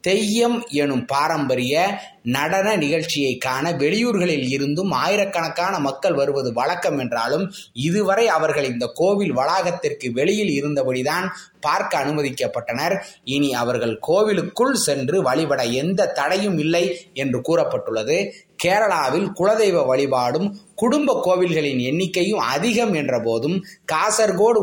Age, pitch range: 20-39, 140-195 Hz